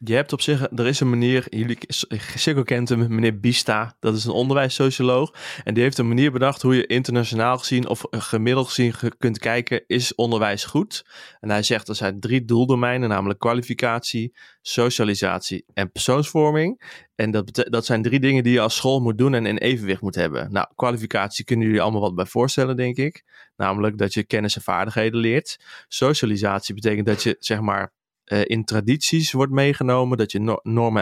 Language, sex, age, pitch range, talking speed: Dutch, male, 20-39, 105-125 Hz, 180 wpm